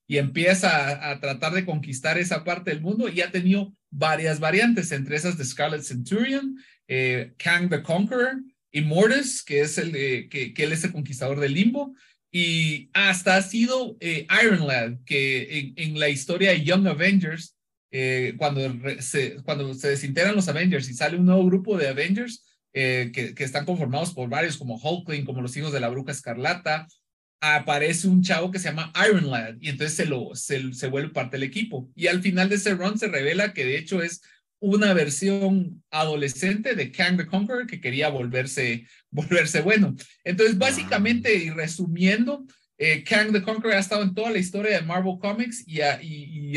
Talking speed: 190 wpm